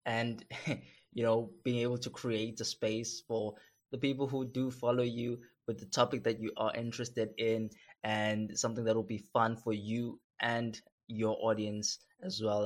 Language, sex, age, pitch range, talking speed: English, male, 20-39, 110-120 Hz, 175 wpm